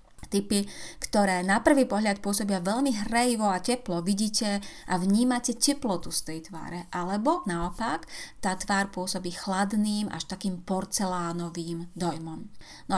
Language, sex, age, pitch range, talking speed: Slovak, female, 30-49, 175-215 Hz, 130 wpm